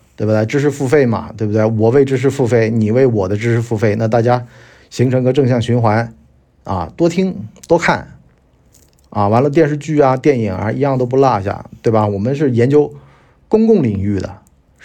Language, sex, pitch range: Chinese, male, 100-135 Hz